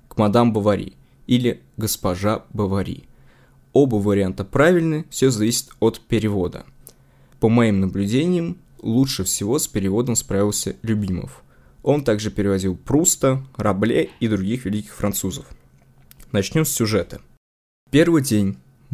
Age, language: 20-39, Russian